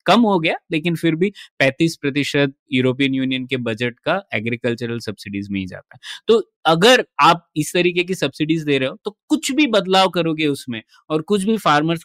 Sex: male